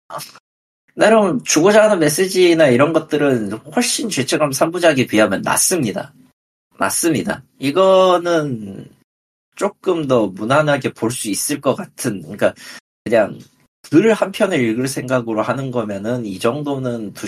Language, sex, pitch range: Korean, male, 105-160 Hz